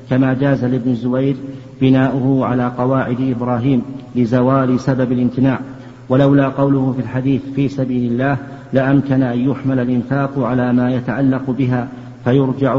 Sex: male